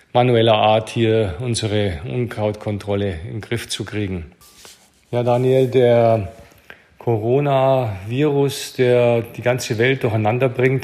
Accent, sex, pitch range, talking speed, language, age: German, male, 110-130 Hz, 110 wpm, German, 40-59